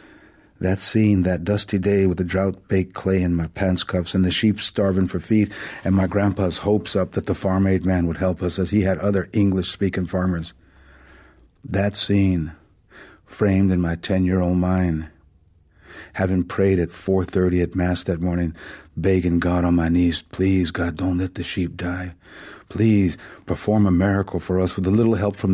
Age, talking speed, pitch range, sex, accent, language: 50-69, 175 wpm, 90-95 Hz, male, American, English